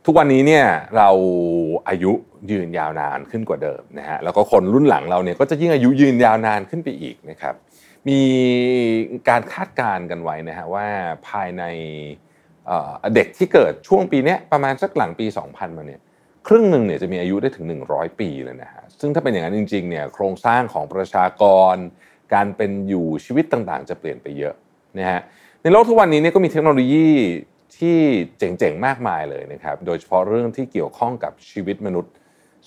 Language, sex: Thai, male